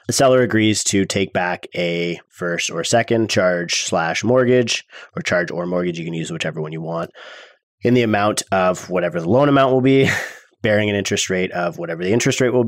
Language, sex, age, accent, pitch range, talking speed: English, male, 30-49, American, 90-110 Hz, 210 wpm